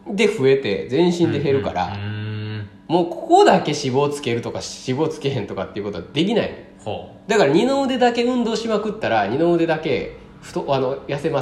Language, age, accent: Japanese, 20-39, native